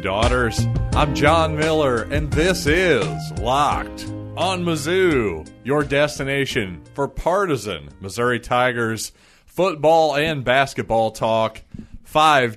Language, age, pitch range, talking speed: English, 30-49, 105-135 Hz, 100 wpm